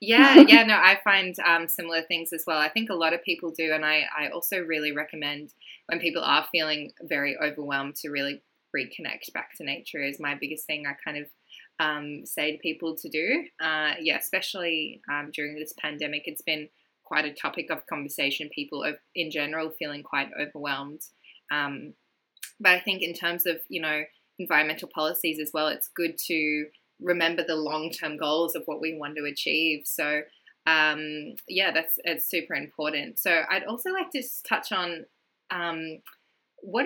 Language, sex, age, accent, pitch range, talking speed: English, female, 10-29, Australian, 150-175 Hz, 180 wpm